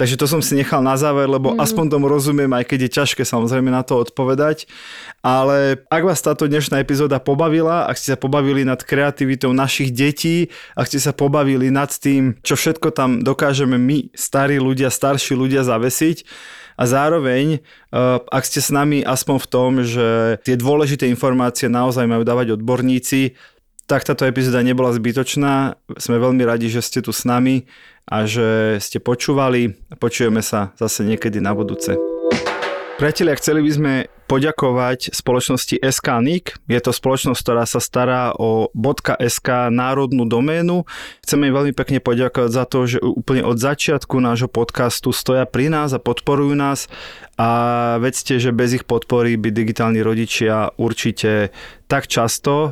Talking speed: 160 wpm